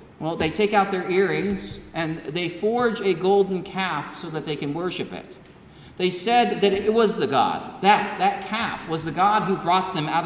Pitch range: 170-230 Hz